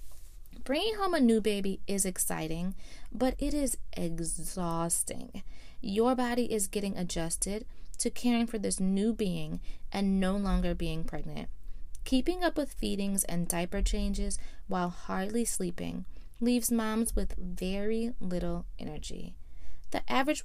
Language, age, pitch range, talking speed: English, 20-39, 170-235 Hz, 130 wpm